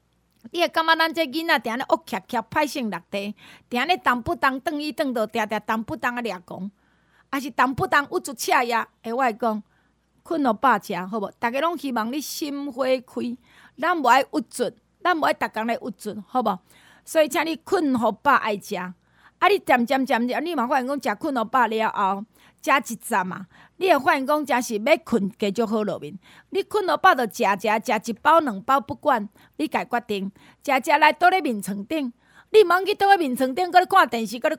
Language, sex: Chinese, female